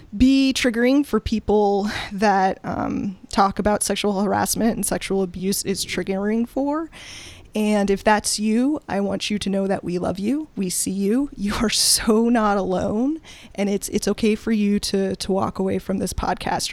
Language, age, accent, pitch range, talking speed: English, 20-39, American, 195-235 Hz, 180 wpm